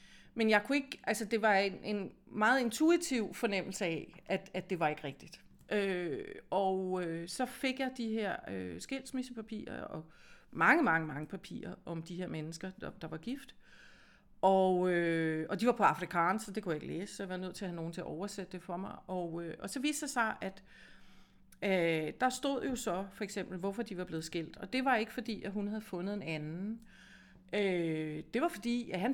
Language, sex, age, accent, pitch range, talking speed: Danish, female, 40-59, native, 175-225 Hz, 220 wpm